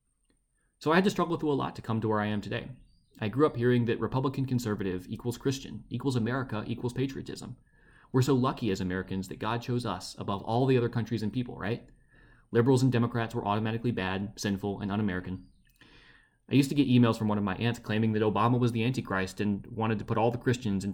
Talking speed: 225 wpm